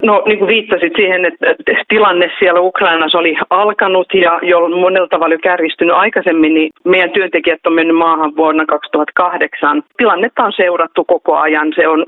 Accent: native